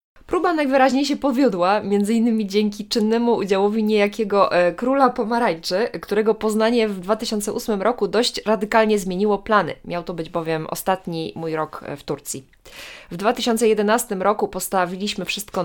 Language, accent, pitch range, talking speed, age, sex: Polish, native, 180-225 Hz, 135 wpm, 20-39, female